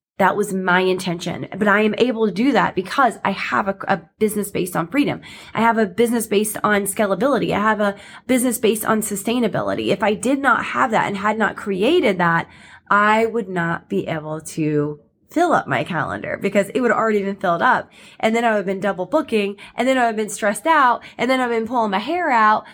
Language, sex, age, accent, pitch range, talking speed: English, female, 20-39, American, 195-255 Hz, 235 wpm